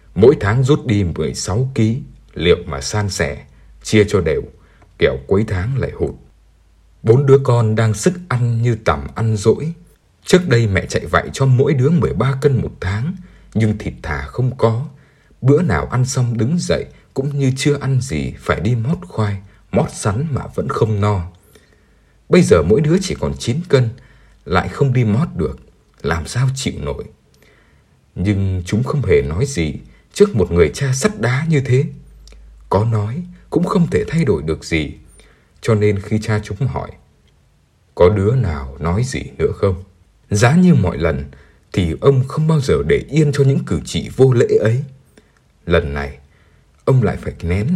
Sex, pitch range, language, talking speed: male, 95-140 Hz, Vietnamese, 180 wpm